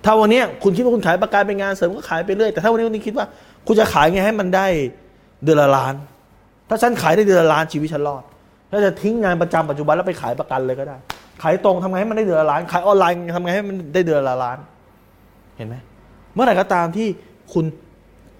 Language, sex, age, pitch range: Thai, male, 20-39, 120-175 Hz